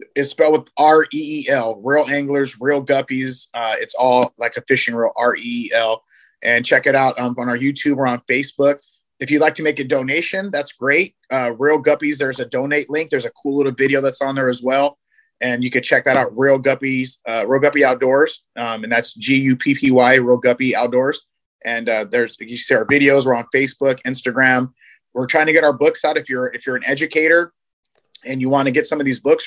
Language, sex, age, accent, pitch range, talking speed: English, male, 30-49, American, 125-150 Hz, 225 wpm